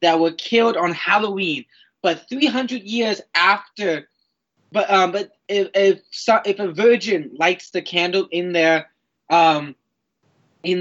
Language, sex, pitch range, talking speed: English, male, 170-215 Hz, 140 wpm